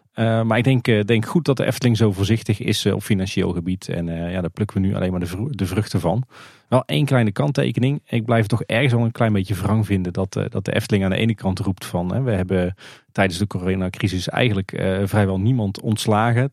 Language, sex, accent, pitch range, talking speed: Dutch, male, Dutch, 95-110 Hz, 245 wpm